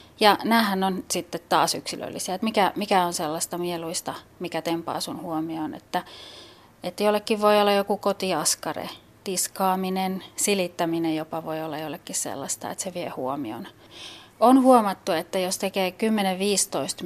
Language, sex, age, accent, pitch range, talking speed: Finnish, female, 30-49, native, 165-200 Hz, 135 wpm